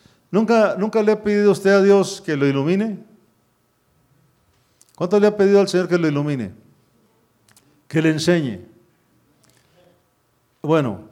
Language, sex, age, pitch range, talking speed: English, male, 50-69, 125-180 Hz, 130 wpm